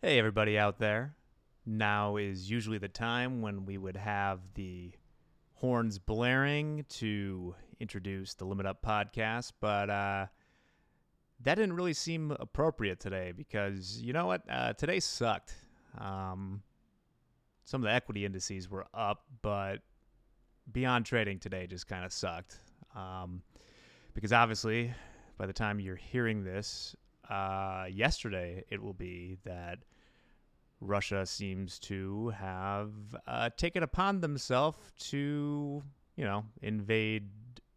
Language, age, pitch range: English, 30-49, 95-120 Hz